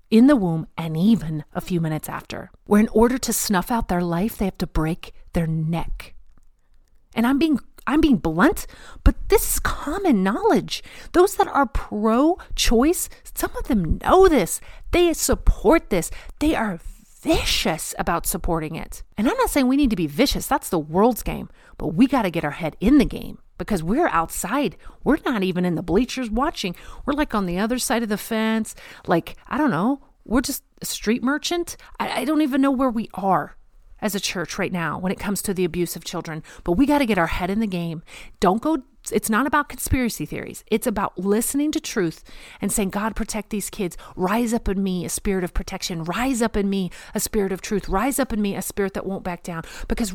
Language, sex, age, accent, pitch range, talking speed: English, female, 40-59, American, 180-265 Hz, 215 wpm